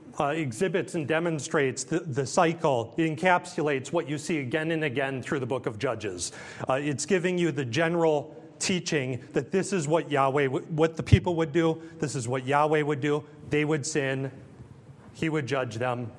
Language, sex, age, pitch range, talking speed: English, male, 30-49, 130-160 Hz, 190 wpm